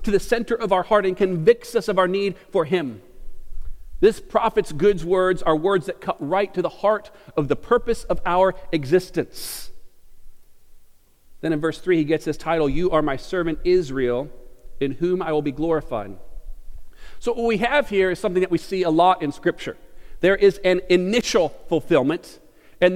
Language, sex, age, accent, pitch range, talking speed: English, male, 40-59, American, 175-250 Hz, 185 wpm